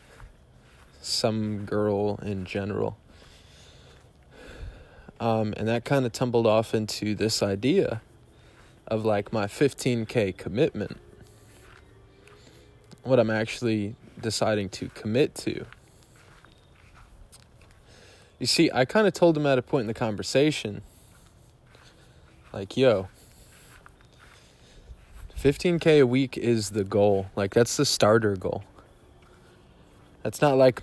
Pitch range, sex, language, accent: 100-120 Hz, male, English, American